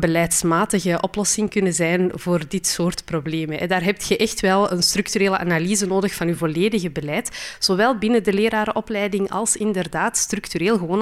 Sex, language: female, Dutch